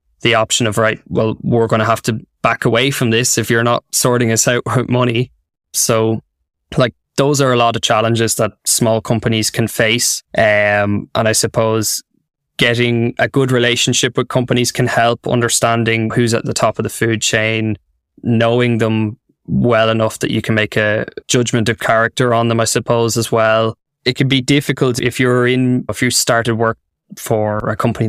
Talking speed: 190 wpm